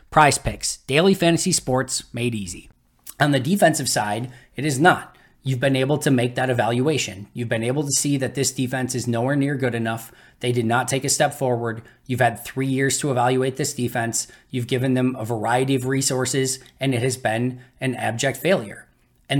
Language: English